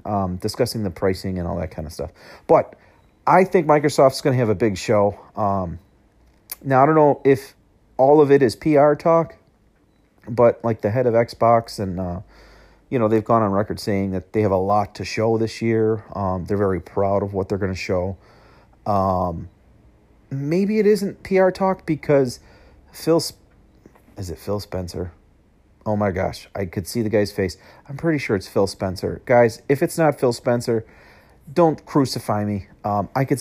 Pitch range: 95-125 Hz